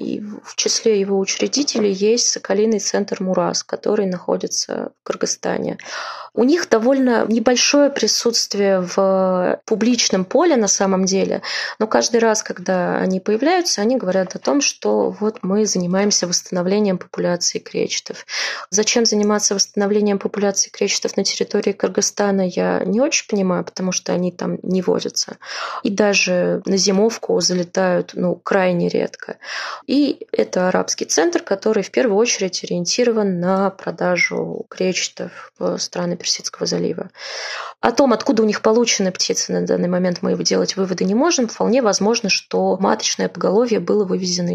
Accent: native